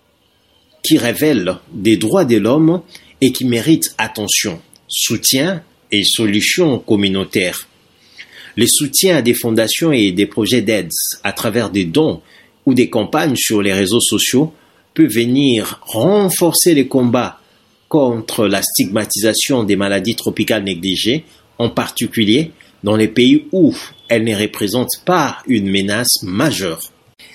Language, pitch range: English, 110-165 Hz